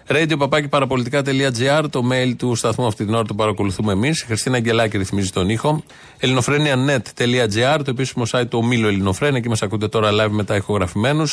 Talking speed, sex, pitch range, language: 150 wpm, male, 115-145 Hz, Greek